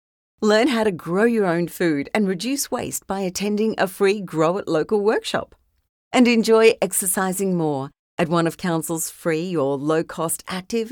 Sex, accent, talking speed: female, Australian, 165 wpm